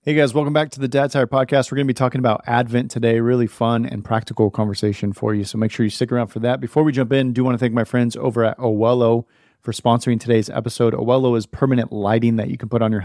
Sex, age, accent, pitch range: male, 30-49, American, 105-120 Hz